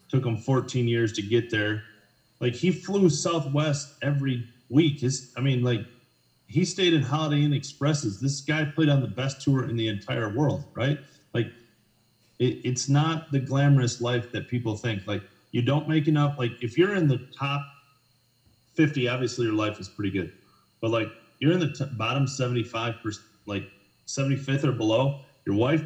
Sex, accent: male, American